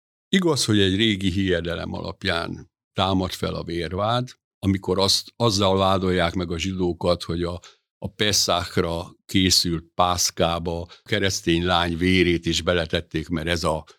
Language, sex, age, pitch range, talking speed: Hungarian, male, 60-79, 85-100 Hz, 135 wpm